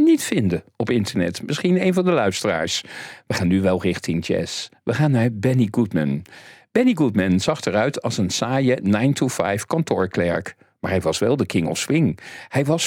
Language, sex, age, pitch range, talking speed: Dutch, male, 50-69, 100-165 Hz, 180 wpm